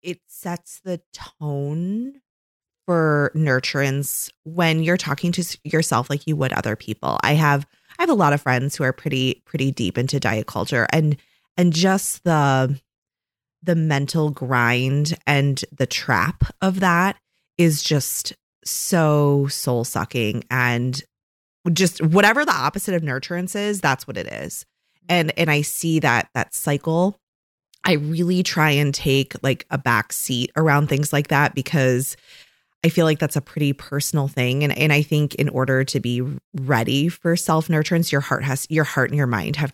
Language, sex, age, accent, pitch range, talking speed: English, female, 20-39, American, 130-165 Hz, 165 wpm